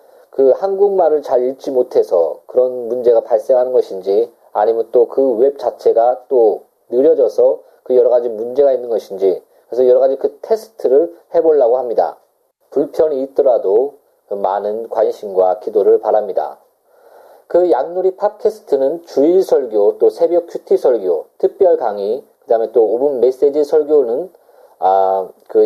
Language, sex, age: Korean, male, 40-59